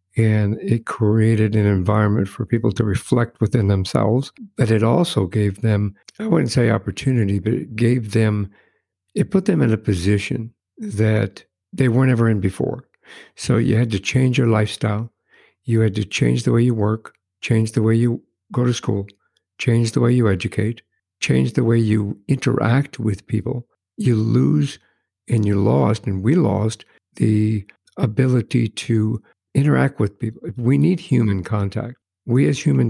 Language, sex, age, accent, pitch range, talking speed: English, male, 60-79, American, 105-125 Hz, 165 wpm